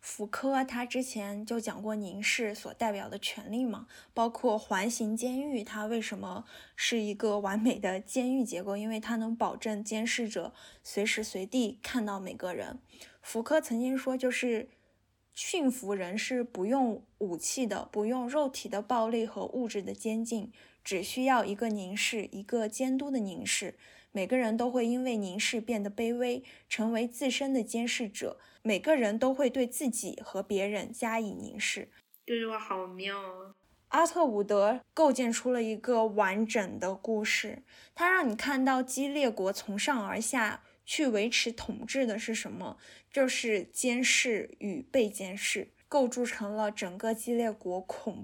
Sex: female